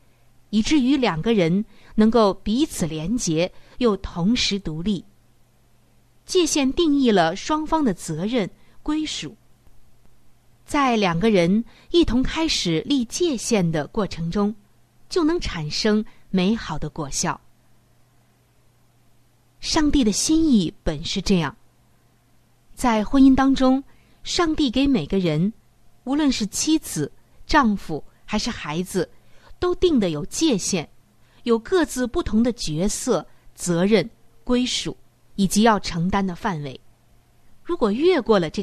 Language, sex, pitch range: Chinese, female, 150-255 Hz